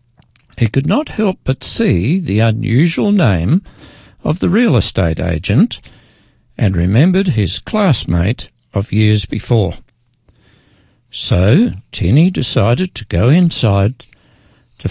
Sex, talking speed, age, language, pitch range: male, 115 wpm, 60-79, English, 105-150 Hz